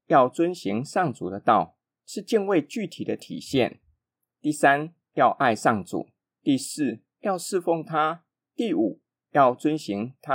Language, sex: Chinese, male